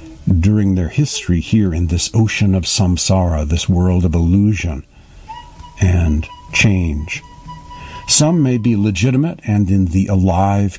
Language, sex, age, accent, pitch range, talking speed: English, male, 60-79, American, 90-120 Hz, 130 wpm